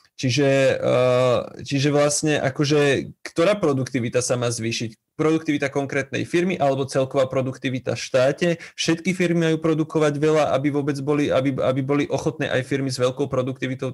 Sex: male